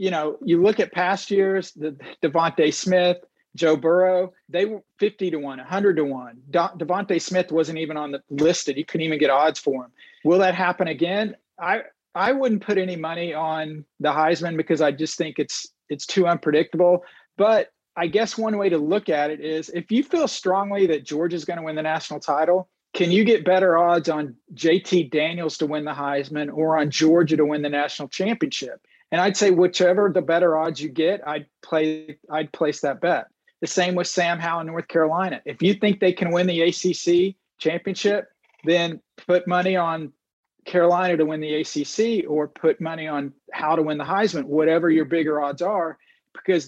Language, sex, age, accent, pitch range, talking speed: English, male, 40-59, American, 155-185 Hz, 200 wpm